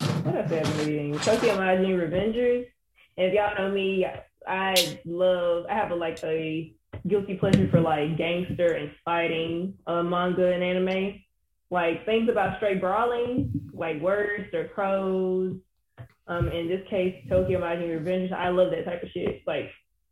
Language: English